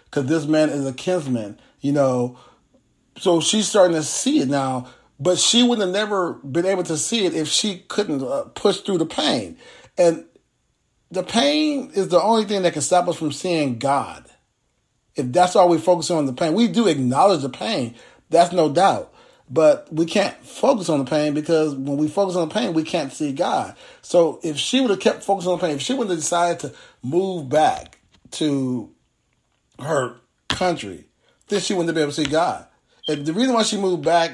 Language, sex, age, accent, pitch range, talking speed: English, male, 40-59, American, 150-190 Hz, 205 wpm